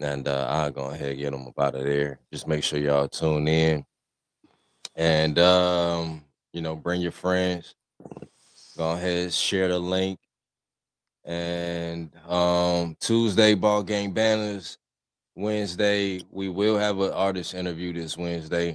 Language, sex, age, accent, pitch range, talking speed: English, male, 20-39, American, 75-90 Hz, 145 wpm